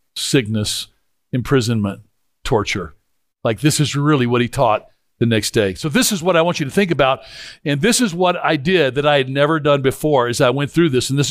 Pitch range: 145-190 Hz